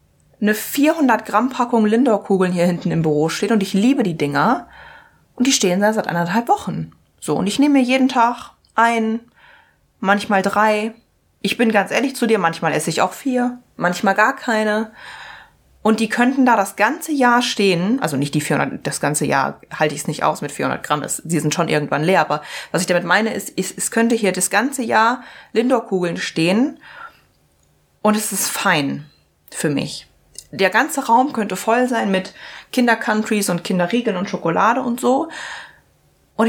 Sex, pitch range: female, 185-240 Hz